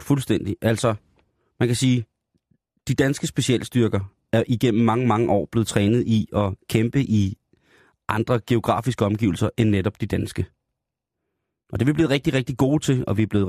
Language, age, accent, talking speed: Danish, 30-49, native, 175 wpm